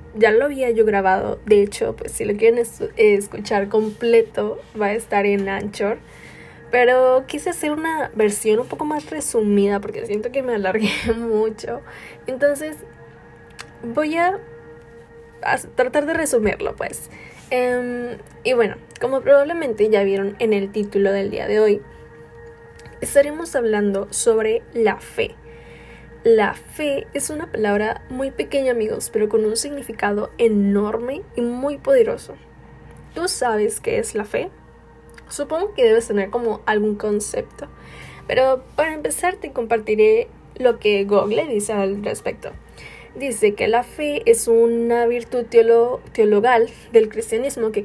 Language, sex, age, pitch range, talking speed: Spanish, female, 10-29, 210-290 Hz, 140 wpm